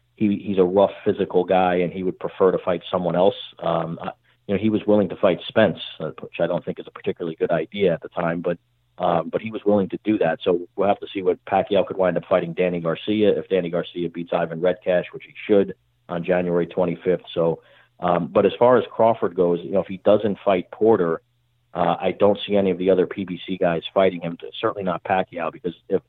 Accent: American